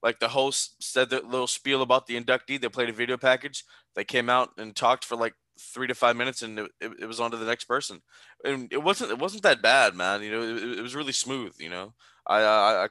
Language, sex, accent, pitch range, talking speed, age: English, male, American, 115-135 Hz, 260 wpm, 20-39